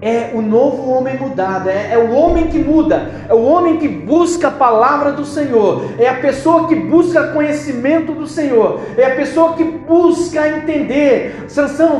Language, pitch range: Portuguese, 260-310 Hz